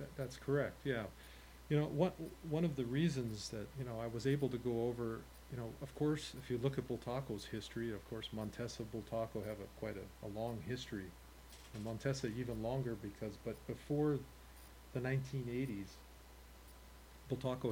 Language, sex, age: English, male, 40-59